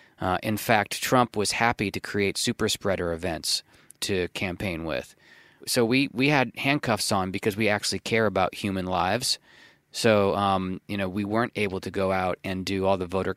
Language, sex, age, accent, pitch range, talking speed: English, male, 30-49, American, 95-110 Hz, 190 wpm